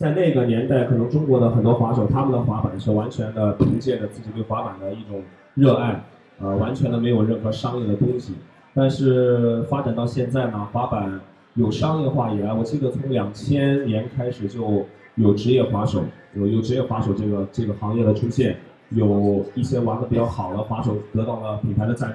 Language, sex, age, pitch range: Chinese, male, 20-39, 105-125 Hz